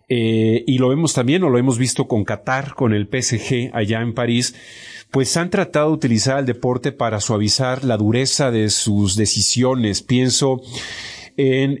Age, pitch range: 40-59, 110-135 Hz